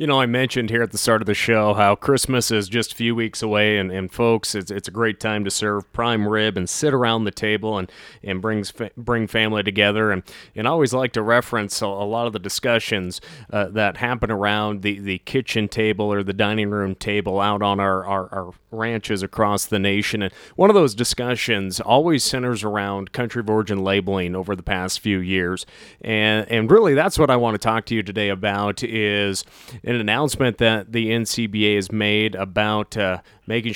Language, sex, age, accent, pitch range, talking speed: English, male, 30-49, American, 105-120 Hz, 210 wpm